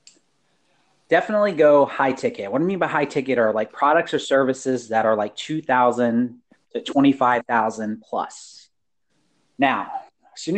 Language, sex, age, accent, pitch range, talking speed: English, male, 30-49, American, 115-160 Hz, 145 wpm